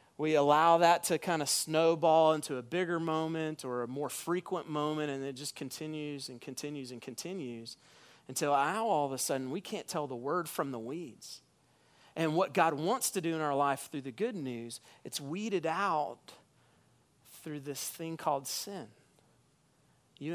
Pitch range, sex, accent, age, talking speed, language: 150-210 Hz, male, American, 40-59, 175 wpm, English